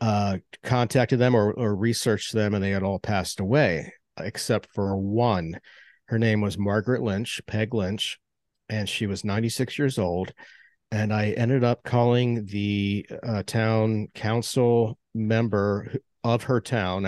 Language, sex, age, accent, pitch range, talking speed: English, male, 50-69, American, 100-120 Hz, 150 wpm